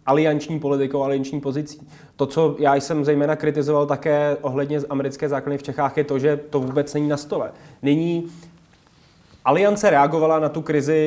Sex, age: male, 20-39